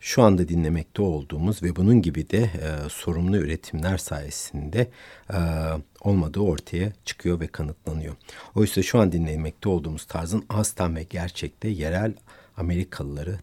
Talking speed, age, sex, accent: 130 wpm, 60-79, male, native